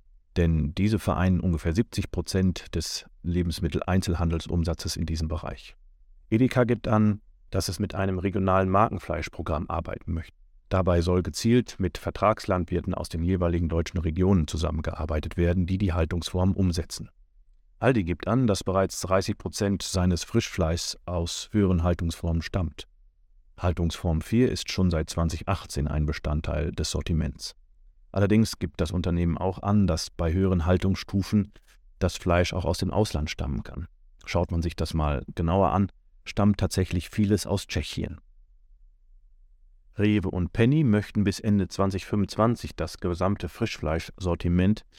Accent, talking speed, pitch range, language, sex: German, 135 wpm, 80-95 Hz, German, male